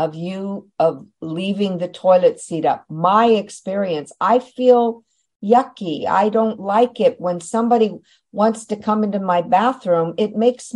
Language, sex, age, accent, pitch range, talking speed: English, female, 50-69, American, 170-225 Hz, 150 wpm